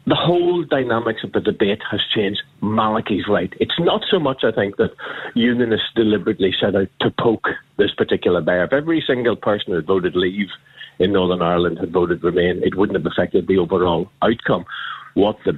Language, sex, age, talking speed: English, male, 50-69, 190 wpm